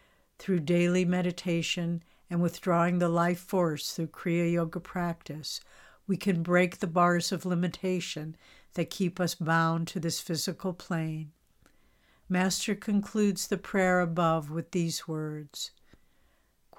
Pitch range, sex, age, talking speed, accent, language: 165-185 Hz, female, 60-79, 125 wpm, American, English